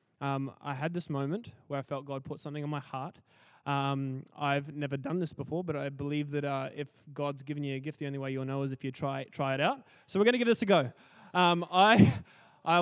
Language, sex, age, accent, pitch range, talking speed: English, male, 20-39, Australian, 135-160 Hz, 255 wpm